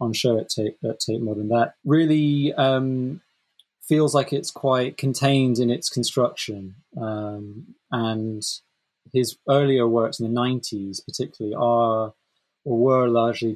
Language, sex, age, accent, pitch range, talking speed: English, male, 20-39, British, 110-130 Hz, 135 wpm